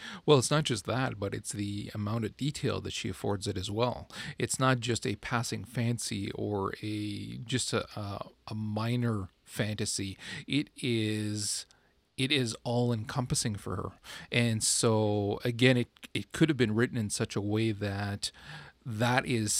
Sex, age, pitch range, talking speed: male, 40-59, 105-125 Hz, 160 wpm